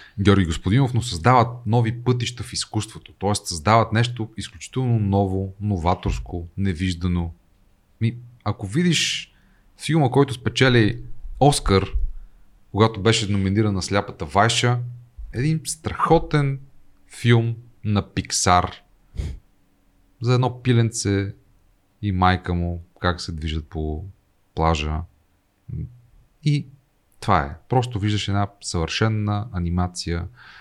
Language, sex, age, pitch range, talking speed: Bulgarian, male, 40-59, 95-120 Hz, 100 wpm